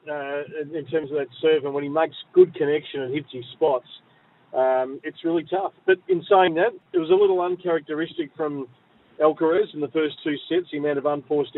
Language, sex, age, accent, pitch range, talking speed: English, male, 40-59, Australian, 130-175 Hz, 205 wpm